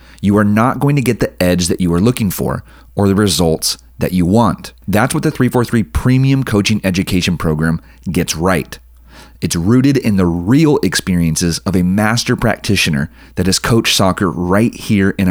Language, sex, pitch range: English, male, 85-115 Hz